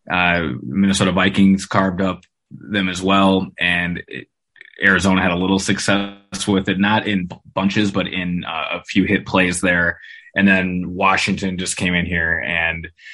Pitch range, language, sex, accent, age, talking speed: 85-100 Hz, English, male, American, 20-39, 170 wpm